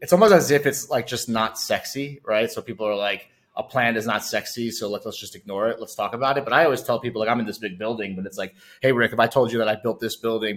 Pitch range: 110-130 Hz